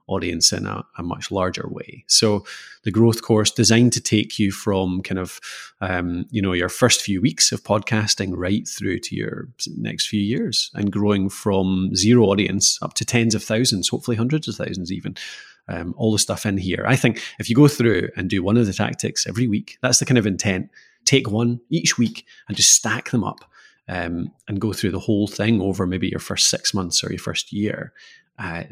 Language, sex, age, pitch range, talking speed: English, male, 30-49, 100-120 Hz, 210 wpm